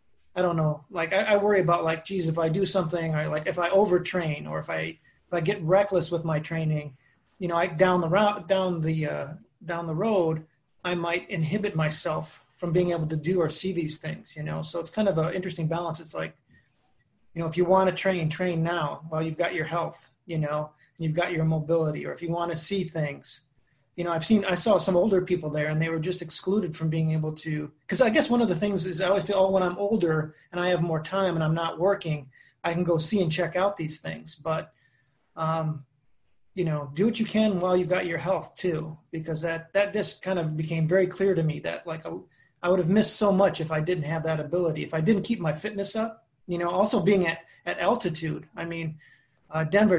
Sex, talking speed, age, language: male, 245 wpm, 30-49, English